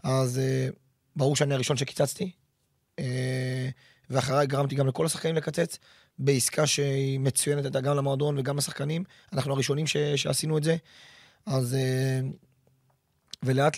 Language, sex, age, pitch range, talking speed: Hebrew, male, 30-49, 135-160 Hz, 130 wpm